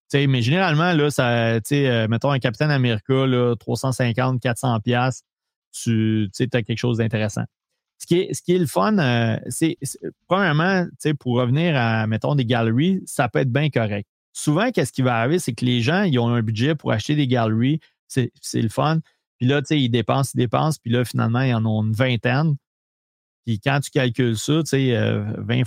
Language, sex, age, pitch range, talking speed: French, male, 30-49, 120-150 Hz, 190 wpm